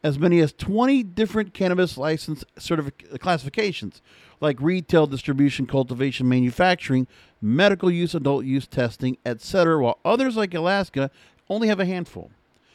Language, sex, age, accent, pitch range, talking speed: English, male, 50-69, American, 140-180 Hz, 130 wpm